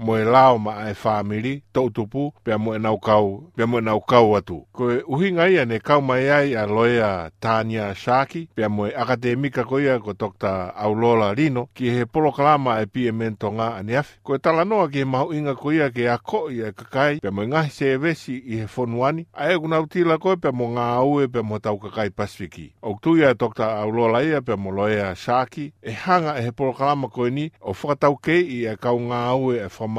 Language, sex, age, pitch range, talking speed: English, male, 50-69, 110-140 Hz, 175 wpm